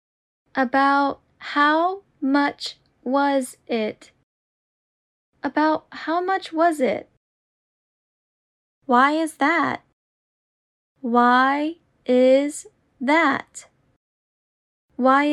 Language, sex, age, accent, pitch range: Japanese, female, 10-29, American, 260-320 Hz